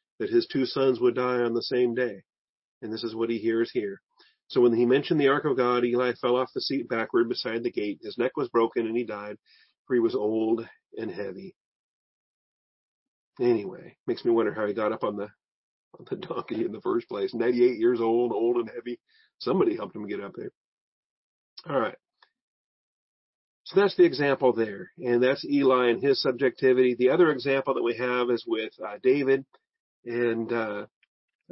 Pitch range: 115-150 Hz